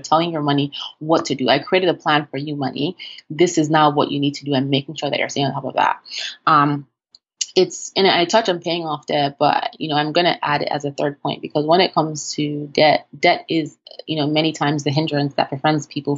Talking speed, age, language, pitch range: 255 wpm, 20-39, English, 140-155 Hz